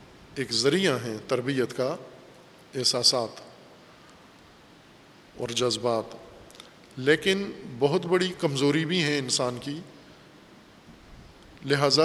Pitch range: 125-155 Hz